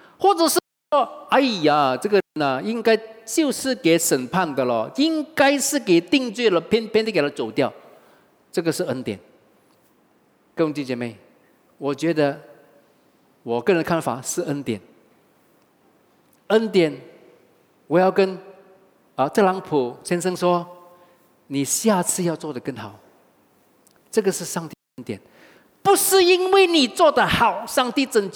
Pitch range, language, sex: 190-310 Hz, English, male